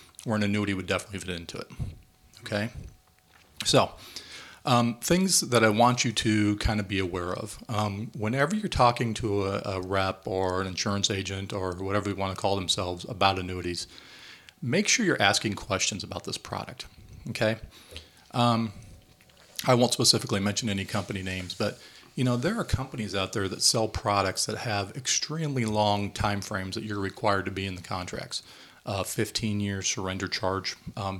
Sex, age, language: male, 40-59, English